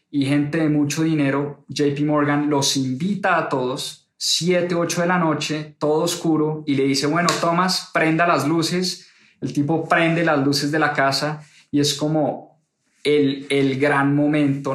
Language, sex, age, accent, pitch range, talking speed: English, male, 20-39, Colombian, 135-170 Hz, 165 wpm